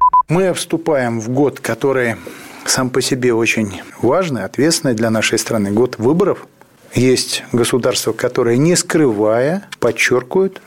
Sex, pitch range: male, 115-160 Hz